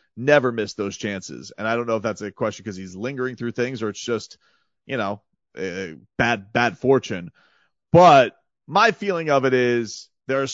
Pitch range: 110-140 Hz